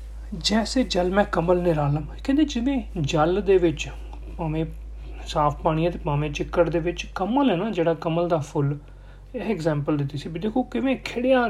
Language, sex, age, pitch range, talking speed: Punjabi, male, 40-59, 155-200 Hz, 175 wpm